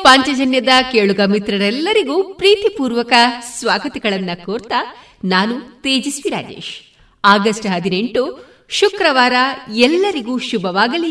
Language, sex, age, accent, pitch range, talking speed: Kannada, female, 30-49, native, 195-275 Hz, 75 wpm